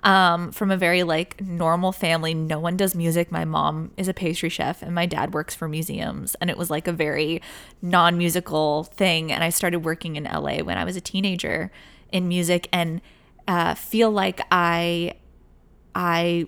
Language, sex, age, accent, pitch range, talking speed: English, female, 20-39, American, 165-205 Hz, 180 wpm